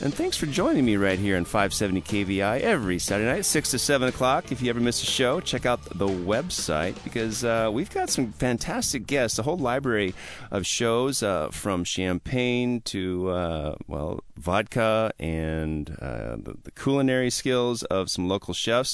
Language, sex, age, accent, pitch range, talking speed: English, male, 30-49, American, 100-130 Hz, 175 wpm